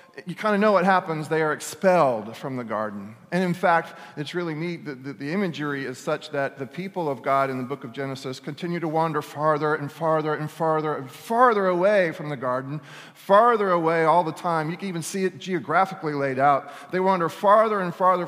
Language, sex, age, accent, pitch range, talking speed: English, male, 40-59, American, 140-185 Hz, 215 wpm